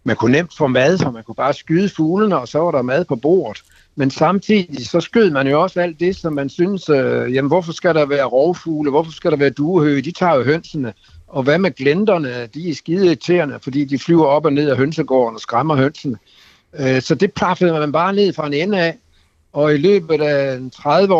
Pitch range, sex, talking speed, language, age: 135-180 Hz, male, 225 wpm, Danish, 60-79